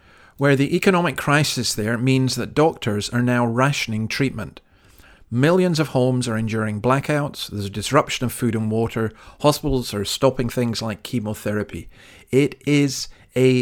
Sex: male